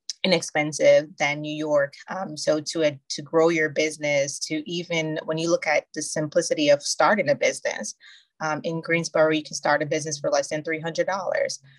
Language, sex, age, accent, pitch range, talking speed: English, female, 20-39, American, 145-165 Hz, 195 wpm